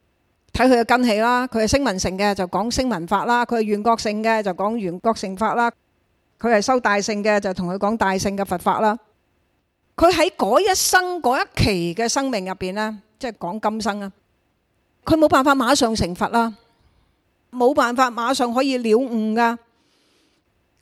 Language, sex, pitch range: Chinese, female, 200-260 Hz